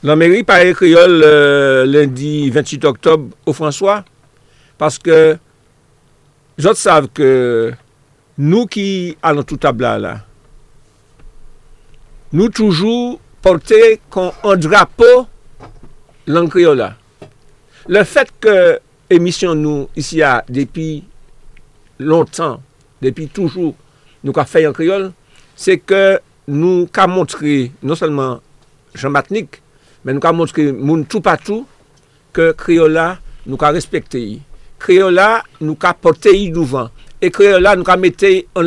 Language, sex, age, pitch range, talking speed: French, male, 60-79, 145-190 Hz, 115 wpm